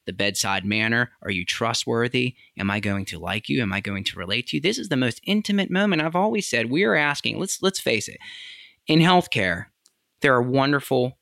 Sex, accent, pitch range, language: male, American, 100-135 Hz, English